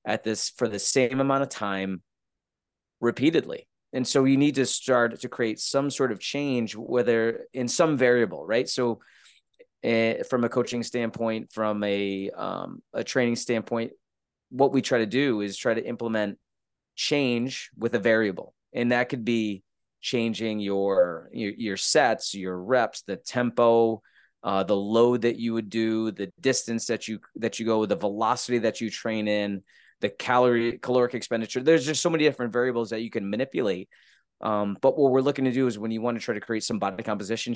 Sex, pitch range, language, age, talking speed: male, 105-125 Hz, English, 30-49, 185 wpm